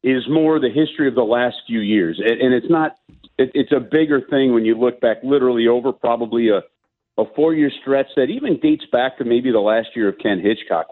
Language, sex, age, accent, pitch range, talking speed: English, male, 50-69, American, 120-155 Hz, 225 wpm